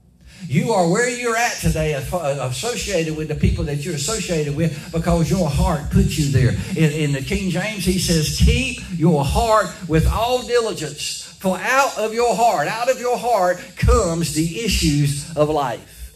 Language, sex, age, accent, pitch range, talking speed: English, male, 60-79, American, 160-215 Hz, 175 wpm